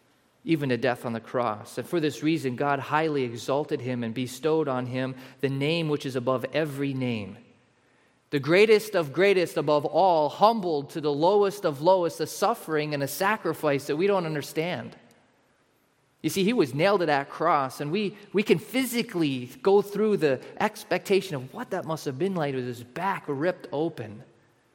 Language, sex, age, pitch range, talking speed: English, male, 30-49, 125-175 Hz, 180 wpm